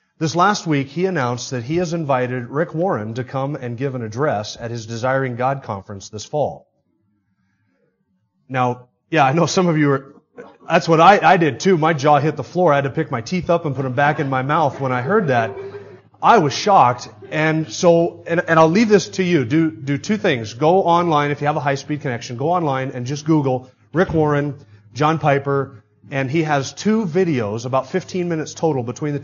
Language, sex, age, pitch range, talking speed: English, male, 30-49, 120-160 Hz, 215 wpm